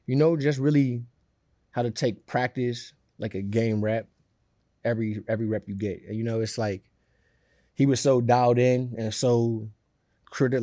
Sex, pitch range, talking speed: male, 105-125 Hz, 165 wpm